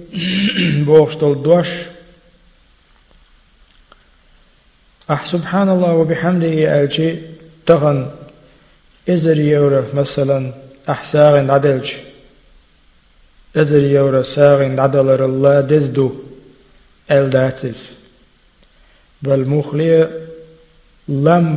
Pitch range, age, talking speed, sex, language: 135-160 Hz, 50-69, 50 wpm, male, Russian